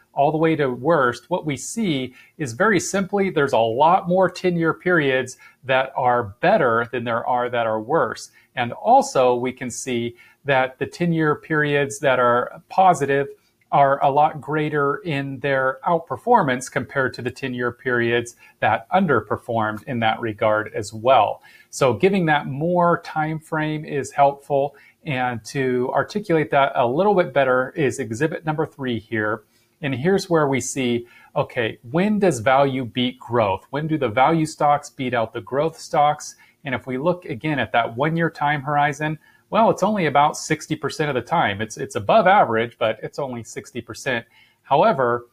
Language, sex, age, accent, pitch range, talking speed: English, male, 40-59, American, 125-165 Hz, 170 wpm